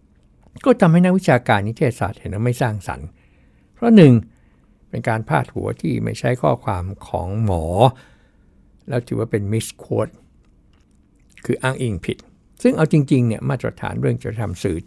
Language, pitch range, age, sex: Thai, 95-125 Hz, 60-79, male